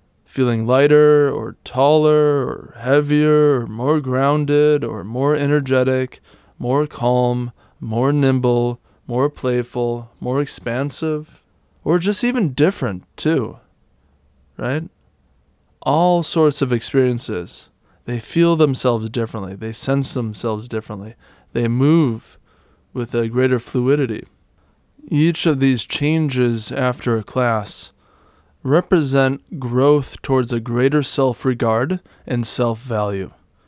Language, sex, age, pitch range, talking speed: English, male, 20-39, 115-145 Hz, 105 wpm